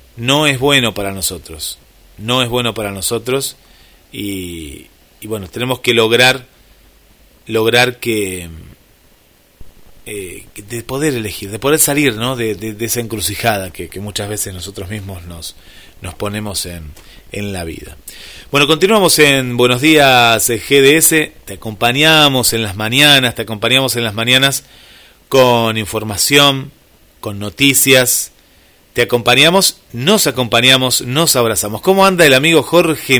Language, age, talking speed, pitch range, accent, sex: Spanish, 30-49, 135 wpm, 105-135 Hz, Argentinian, male